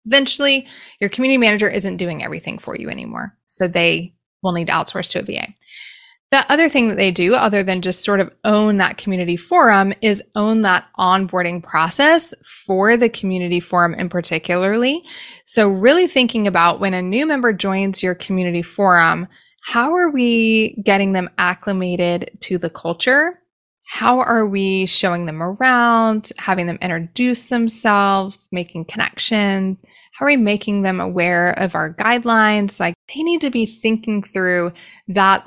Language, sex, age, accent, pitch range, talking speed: English, female, 20-39, American, 180-230 Hz, 160 wpm